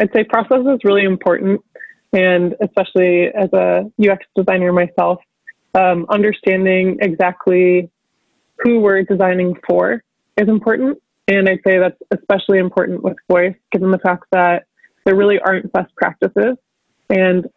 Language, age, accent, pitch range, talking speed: English, 20-39, American, 180-205 Hz, 135 wpm